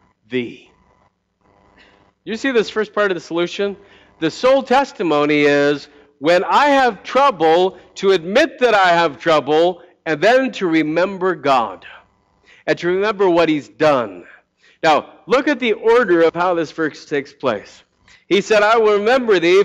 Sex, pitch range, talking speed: male, 145-205 Hz, 155 wpm